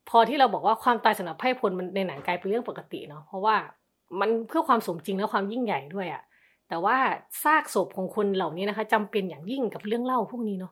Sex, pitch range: female, 170-220 Hz